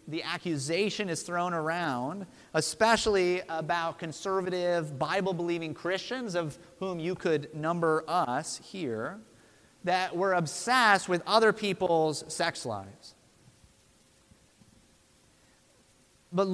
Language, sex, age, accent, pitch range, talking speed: English, male, 30-49, American, 160-195 Hz, 95 wpm